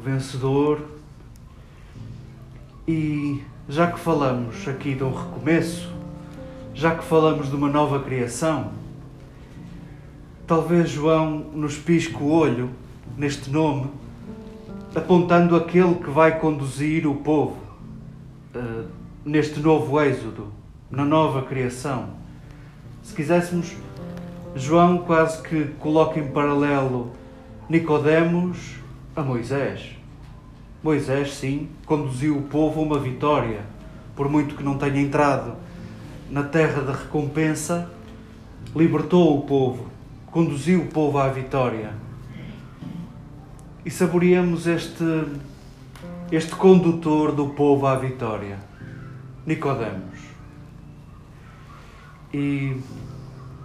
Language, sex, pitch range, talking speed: Portuguese, male, 130-160 Hz, 95 wpm